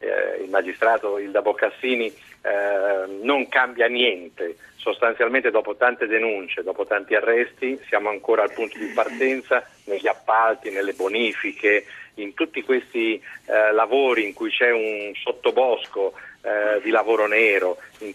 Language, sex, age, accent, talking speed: Italian, male, 50-69, native, 130 wpm